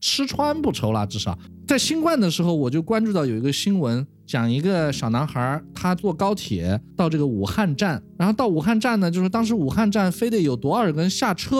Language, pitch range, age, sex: Chinese, 140-230 Hz, 20-39, male